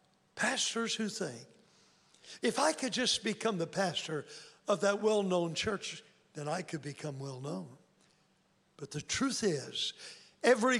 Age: 60-79